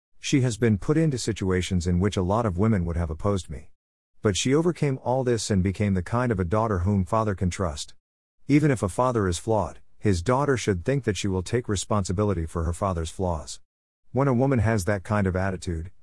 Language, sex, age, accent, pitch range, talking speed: English, male, 50-69, American, 85-120 Hz, 220 wpm